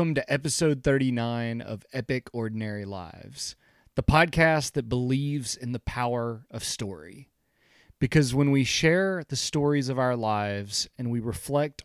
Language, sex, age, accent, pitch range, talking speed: English, male, 30-49, American, 115-140 Hz, 145 wpm